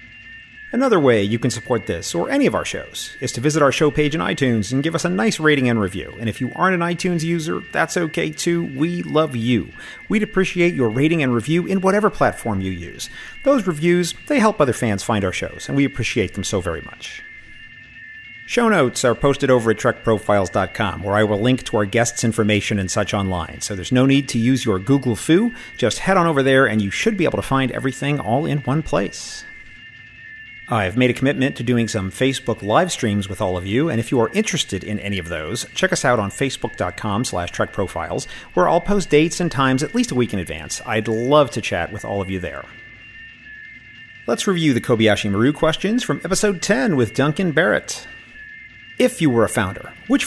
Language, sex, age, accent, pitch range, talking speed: English, male, 40-59, American, 105-170 Hz, 215 wpm